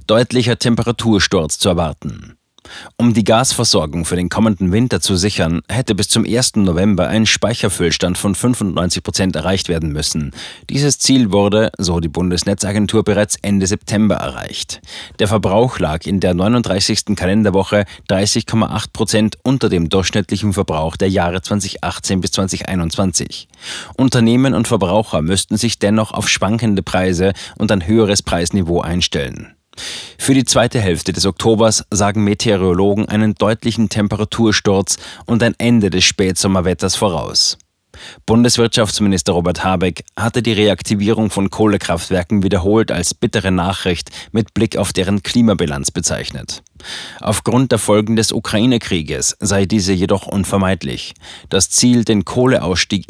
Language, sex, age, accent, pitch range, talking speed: German, male, 30-49, German, 95-110 Hz, 130 wpm